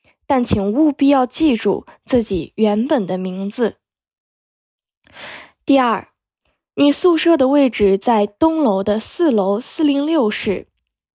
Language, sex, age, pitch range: Chinese, female, 20-39, 210-300 Hz